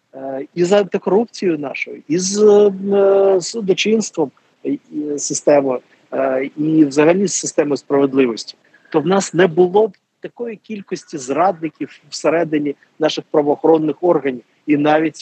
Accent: native